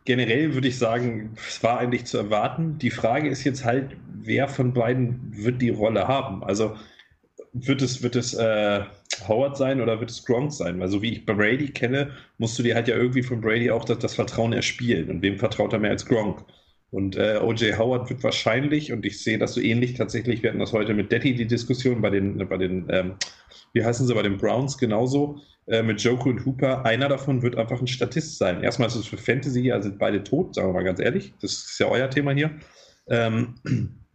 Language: German